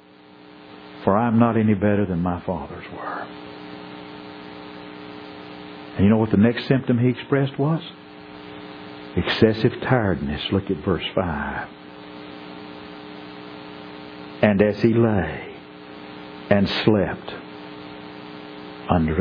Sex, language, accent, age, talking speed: male, English, American, 60-79, 105 wpm